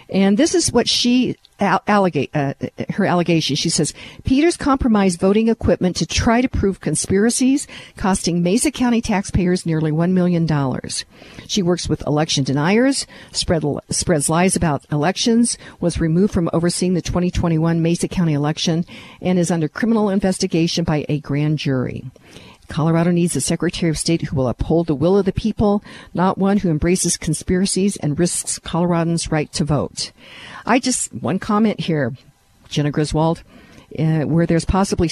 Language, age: English, 50-69